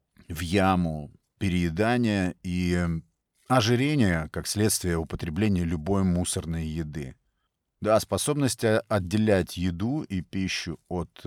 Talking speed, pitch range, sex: 95 wpm, 85-105 Hz, male